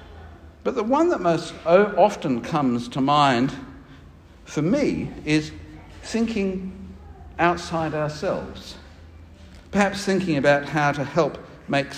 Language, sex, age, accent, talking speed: English, male, 60-79, British, 110 wpm